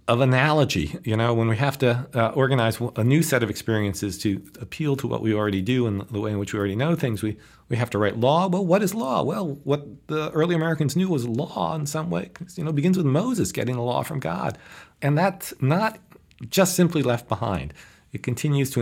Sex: male